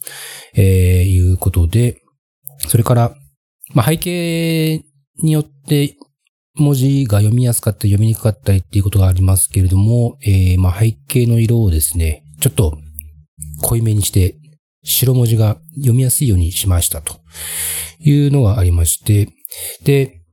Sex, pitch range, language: male, 90-135 Hz, Japanese